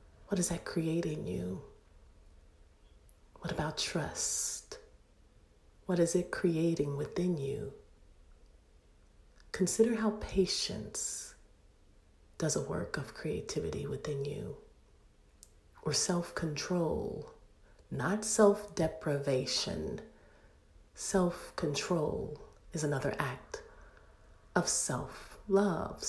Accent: American